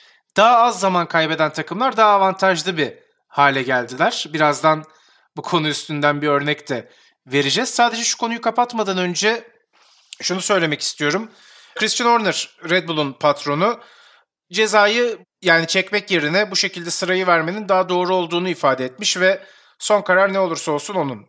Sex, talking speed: male, 145 wpm